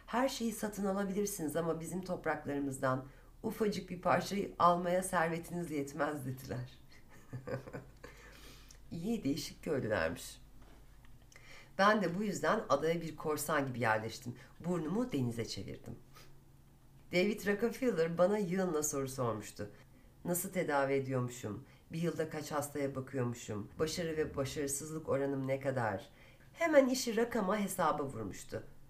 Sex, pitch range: female, 130-180 Hz